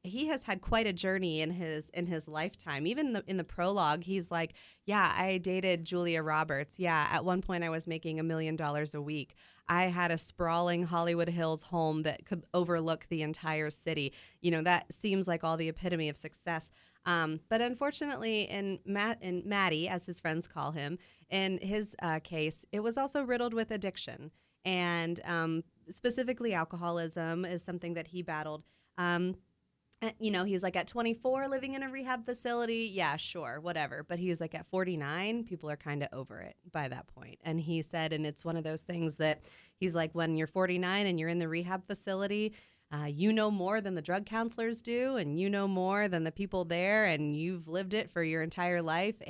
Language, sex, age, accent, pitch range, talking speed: English, female, 20-39, American, 160-195 Hz, 200 wpm